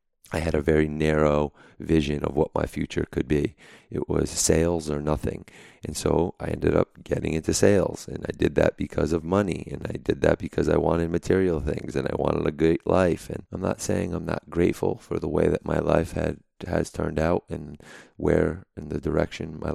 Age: 30-49